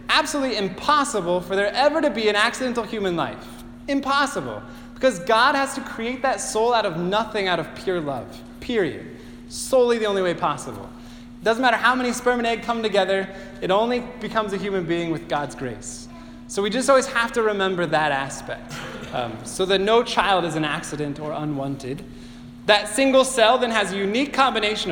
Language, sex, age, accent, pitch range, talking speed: English, male, 20-39, American, 145-230 Hz, 185 wpm